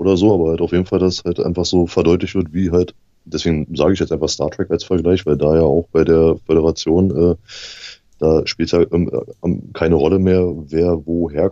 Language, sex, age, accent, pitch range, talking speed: German, male, 20-39, German, 75-90 Hz, 220 wpm